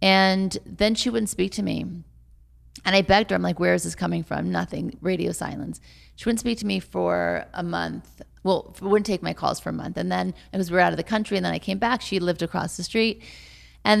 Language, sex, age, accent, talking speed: English, female, 30-49, American, 250 wpm